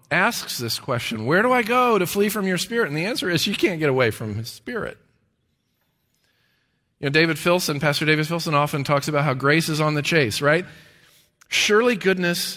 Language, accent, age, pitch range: English, American, 40-59, 150-230 Hz